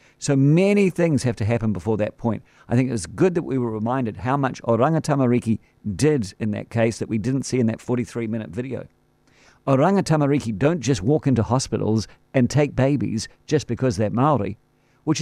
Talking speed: 195 wpm